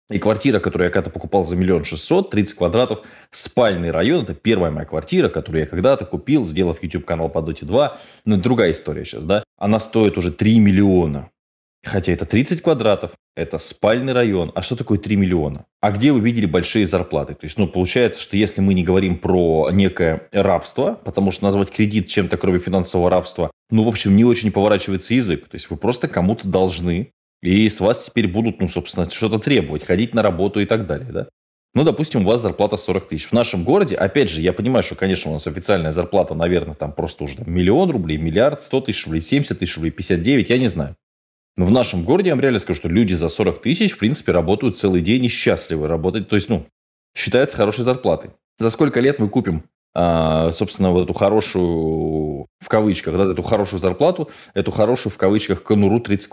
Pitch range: 90-110 Hz